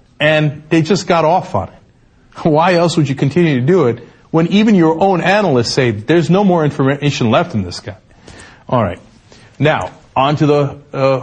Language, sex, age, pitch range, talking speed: English, male, 40-59, 130-180 Hz, 190 wpm